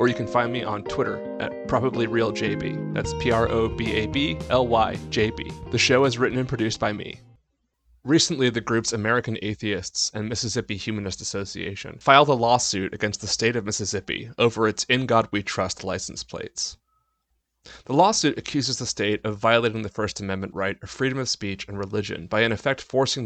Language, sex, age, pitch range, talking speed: English, male, 30-49, 100-125 Hz, 170 wpm